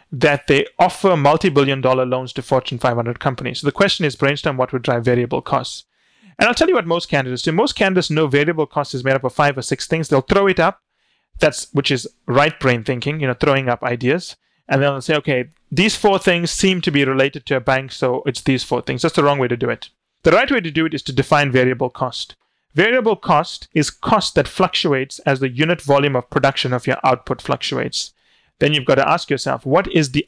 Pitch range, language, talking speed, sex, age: 130-160 Hz, English, 235 wpm, male, 30-49